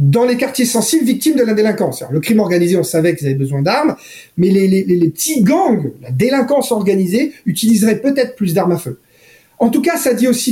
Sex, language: male, French